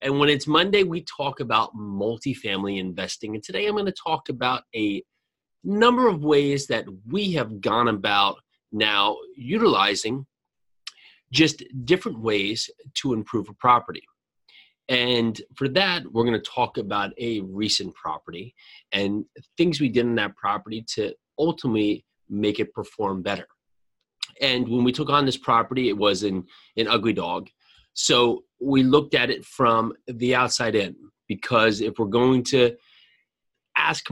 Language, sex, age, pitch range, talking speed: English, male, 30-49, 110-145 Hz, 150 wpm